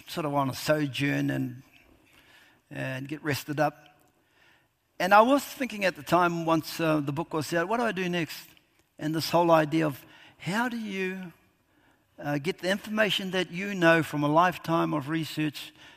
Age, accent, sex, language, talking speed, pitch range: 60-79, Australian, male, English, 180 wpm, 145-170 Hz